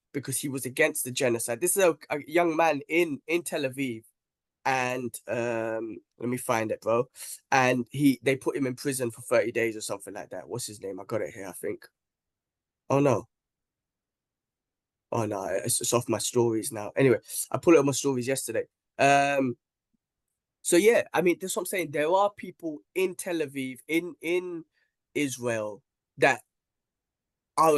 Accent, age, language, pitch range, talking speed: British, 10-29, English, 120-150 Hz, 180 wpm